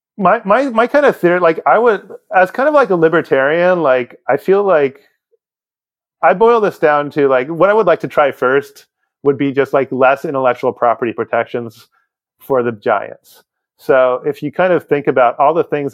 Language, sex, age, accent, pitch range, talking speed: English, male, 30-49, American, 125-160 Hz, 200 wpm